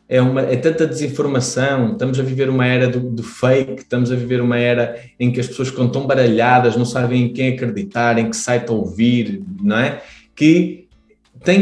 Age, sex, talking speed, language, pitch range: 20-39, male, 190 wpm, Portuguese, 105-125 Hz